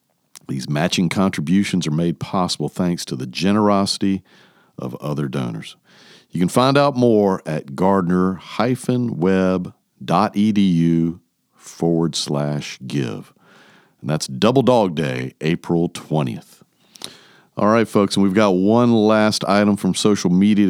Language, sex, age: English, male, 50-69